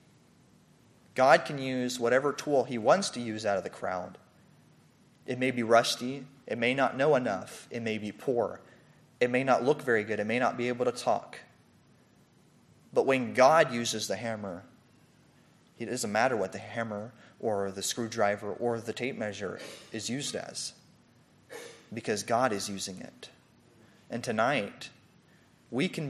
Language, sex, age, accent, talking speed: English, male, 30-49, American, 160 wpm